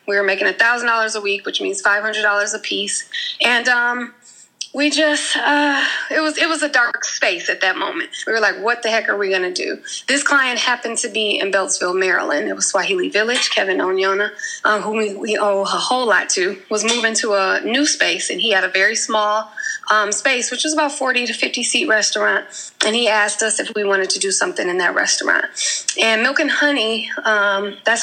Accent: American